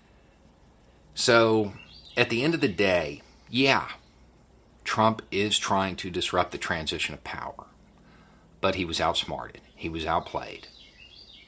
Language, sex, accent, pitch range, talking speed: English, male, American, 80-100 Hz, 125 wpm